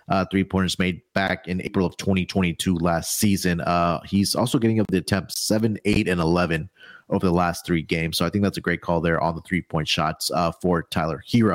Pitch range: 105-125 Hz